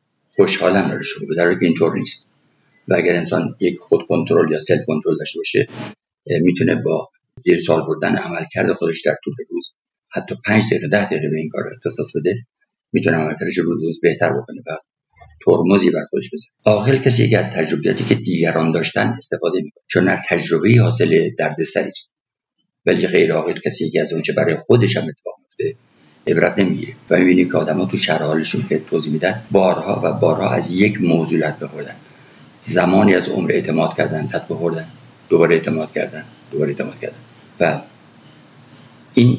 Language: Persian